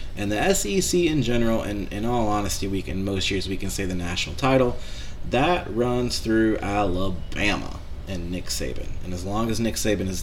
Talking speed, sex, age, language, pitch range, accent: 195 wpm, male, 30-49, English, 90-105 Hz, American